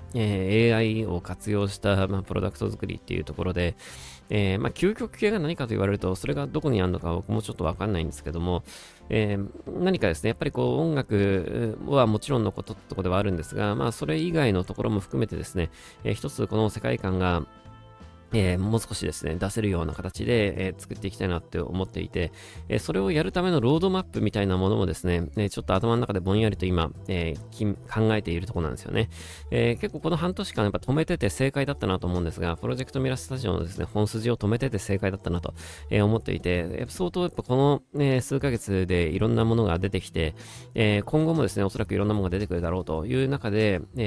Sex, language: male, Japanese